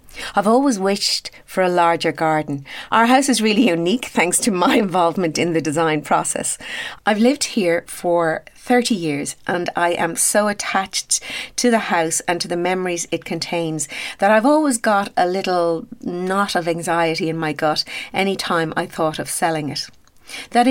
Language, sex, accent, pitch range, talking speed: English, female, Irish, 160-200 Hz, 175 wpm